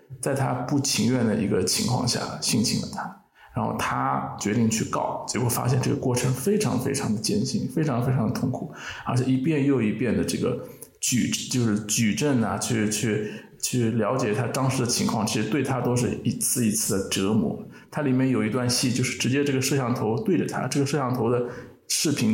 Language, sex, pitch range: Chinese, male, 115-135 Hz